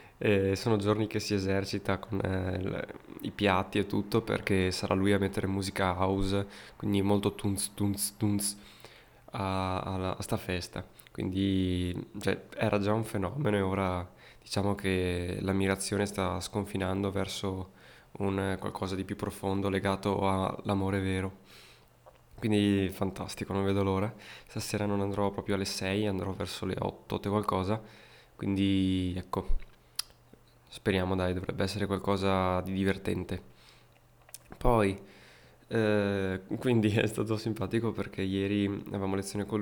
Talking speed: 135 wpm